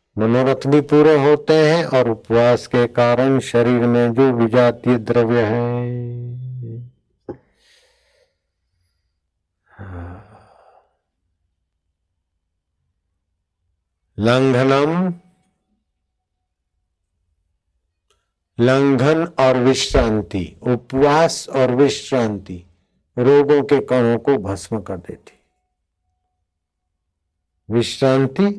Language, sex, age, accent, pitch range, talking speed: Hindi, male, 50-69, native, 100-135 Hz, 65 wpm